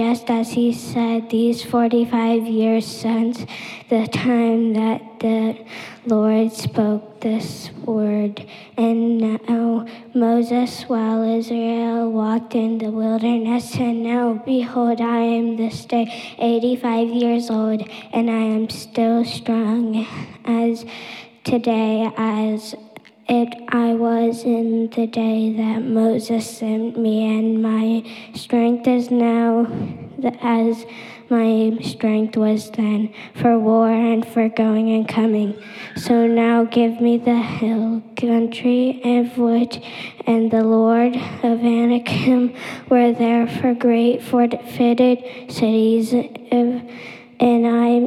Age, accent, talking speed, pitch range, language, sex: 10-29, American, 115 wpm, 225-235 Hz, English, female